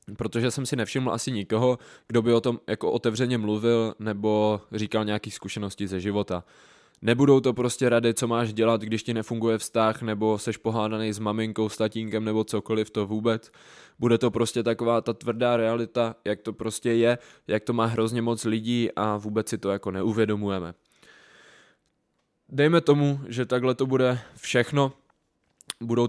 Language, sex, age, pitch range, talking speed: Czech, male, 20-39, 110-115 Hz, 165 wpm